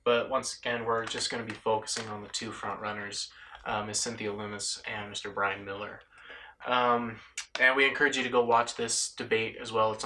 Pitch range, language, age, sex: 110-120 Hz, English, 20-39, male